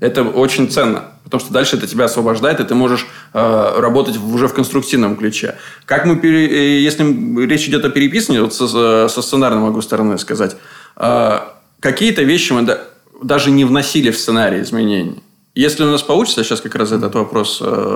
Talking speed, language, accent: 175 wpm, Russian, native